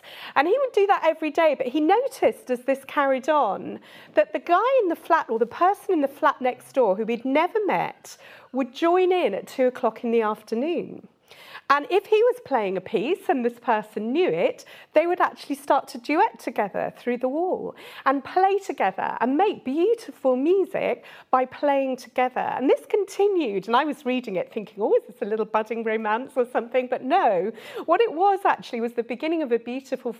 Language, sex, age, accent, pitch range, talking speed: English, female, 40-59, British, 215-310 Hz, 205 wpm